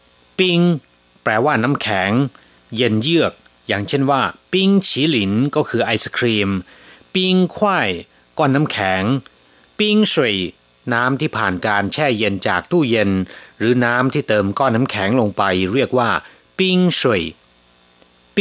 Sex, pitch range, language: male, 90-140 Hz, Thai